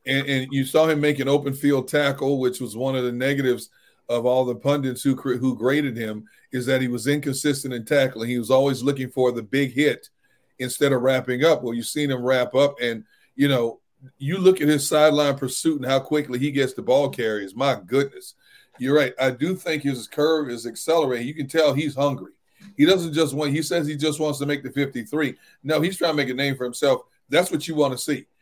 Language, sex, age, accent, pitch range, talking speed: English, male, 40-59, American, 130-160 Hz, 230 wpm